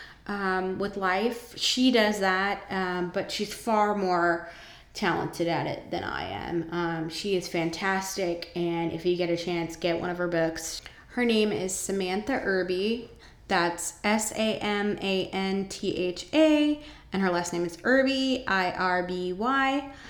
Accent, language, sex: American, English, female